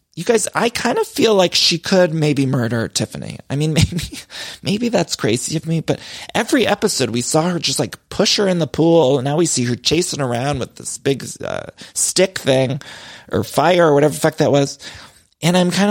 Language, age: English, 30-49